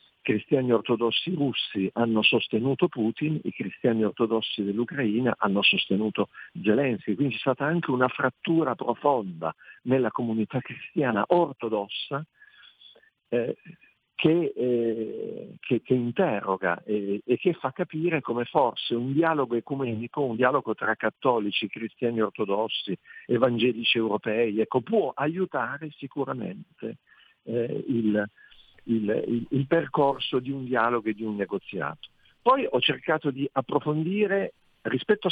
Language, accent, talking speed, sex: Italian, native, 120 wpm, male